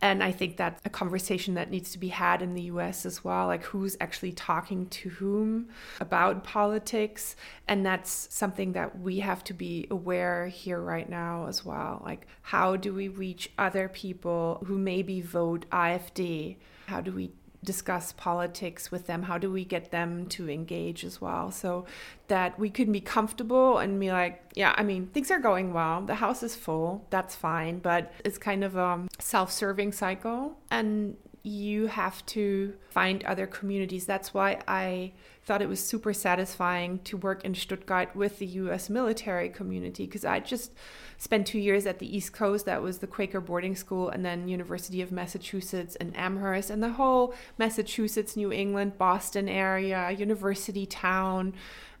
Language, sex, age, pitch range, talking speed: English, female, 20-39, 180-205 Hz, 175 wpm